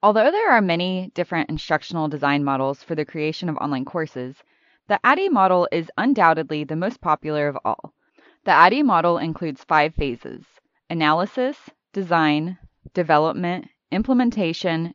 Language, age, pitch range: English, 20-39, 155-205 Hz